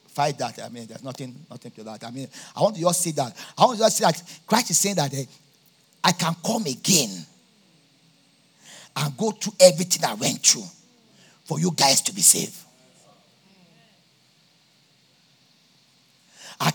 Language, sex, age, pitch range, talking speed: English, male, 50-69, 150-195 Hz, 165 wpm